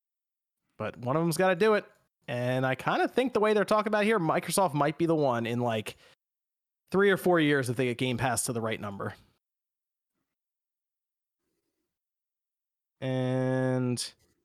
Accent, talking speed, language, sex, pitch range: American, 165 wpm, English, male, 130-185 Hz